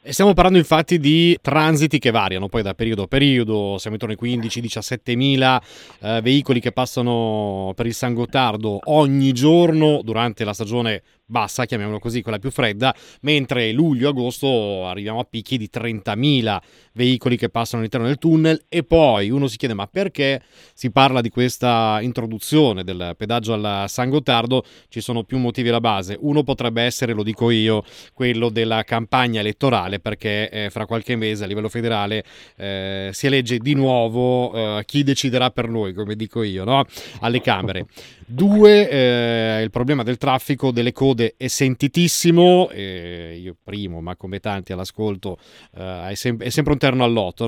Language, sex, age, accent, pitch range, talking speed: Italian, male, 30-49, native, 110-135 Hz, 160 wpm